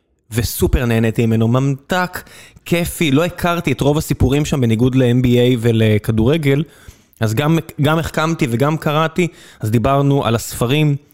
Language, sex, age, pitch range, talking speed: Hebrew, male, 20-39, 120-155 Hz, 130 wpm